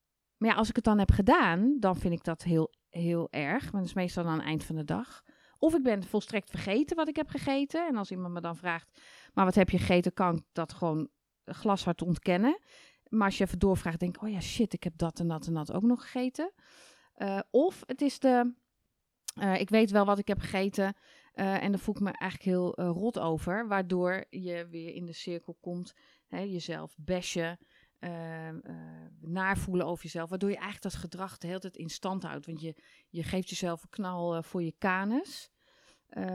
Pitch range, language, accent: 170-210 Hz, Dutch, Dutch